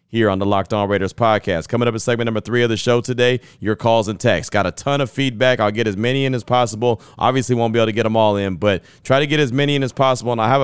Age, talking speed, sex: 30-49, 305 wpm, male